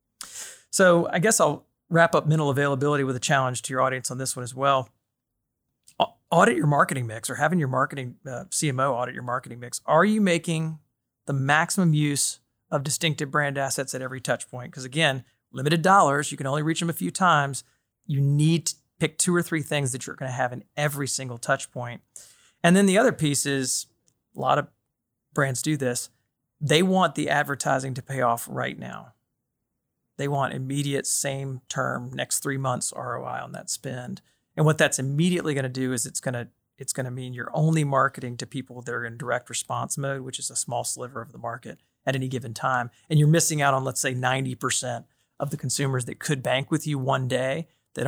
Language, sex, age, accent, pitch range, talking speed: English, male, 40-59, American, 125-155 Hz, 205 wpm